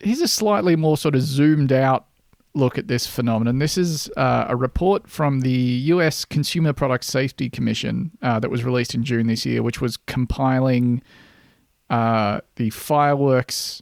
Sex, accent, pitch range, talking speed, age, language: male, Australian, 120-160 Hz, 165 wpm, 30-49, English